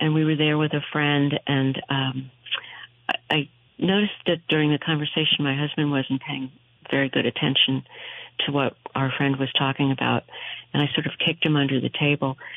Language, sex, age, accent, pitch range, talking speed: English, female, 50-69, American, 140-165 Hz, 185 wpm